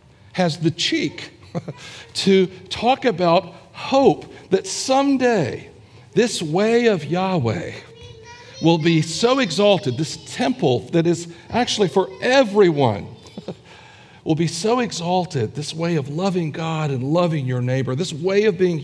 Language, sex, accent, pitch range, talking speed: English, male, American, 120-175 Hz, 130 wpm